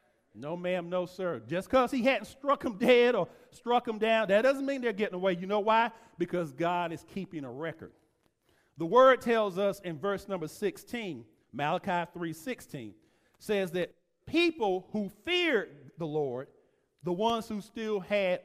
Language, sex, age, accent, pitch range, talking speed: English, male, 50-69, American, 170-225 Hz, 170 wpm